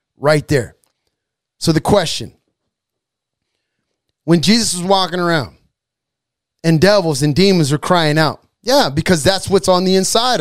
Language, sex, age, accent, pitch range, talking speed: English, male, 30-49, American, 140-210 Hz, 140 wpm